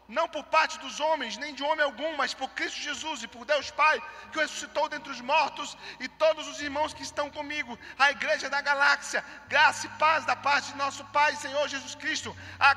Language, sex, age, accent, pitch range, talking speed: Gujarati, male, 40-59, Brazilian, 225-310 Hz, 215 wpm